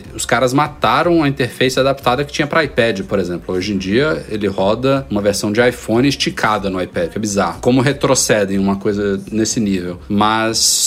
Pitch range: 105-135 Hz